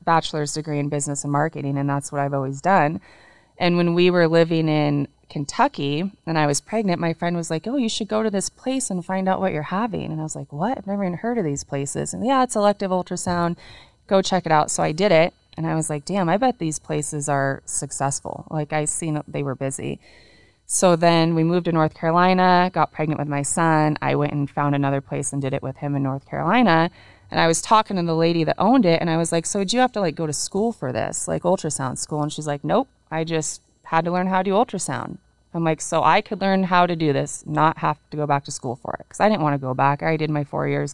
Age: 20-39